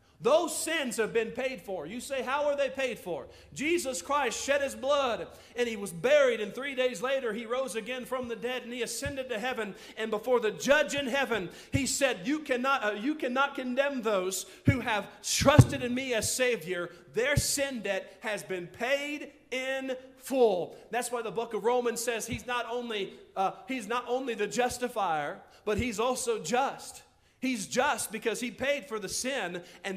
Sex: male